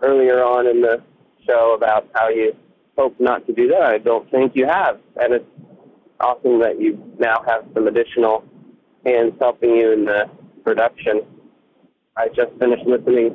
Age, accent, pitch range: 30-49, American, 125-170 Hz